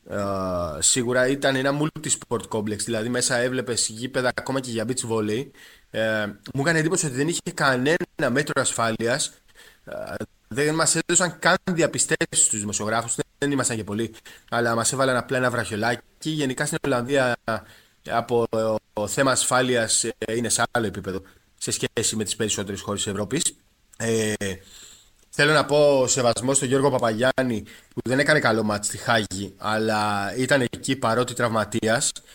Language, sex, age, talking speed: Greek, male, 20-39, 145 wpm